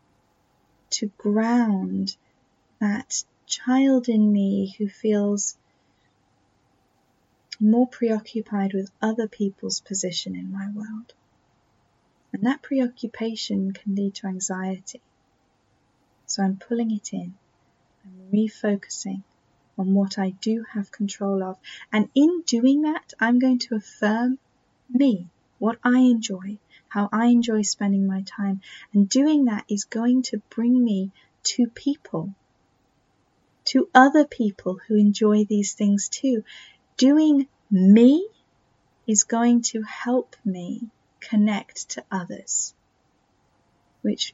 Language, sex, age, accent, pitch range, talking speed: English, female, 10-29, British, 200-240 Hz, 115 wpm